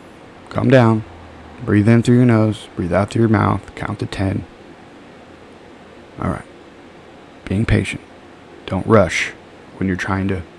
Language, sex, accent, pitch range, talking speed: English, male, American, 95-115 Hz, 140 wpm